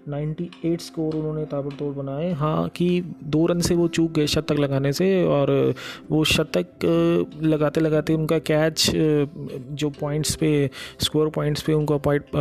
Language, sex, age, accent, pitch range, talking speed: Hindi, male, 30-49, native, 140-155 Hz, 145 wpm